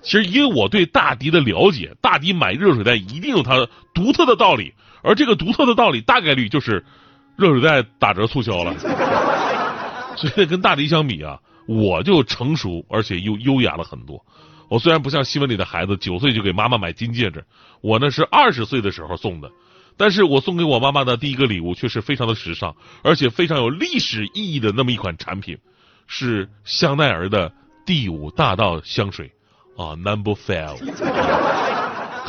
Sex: male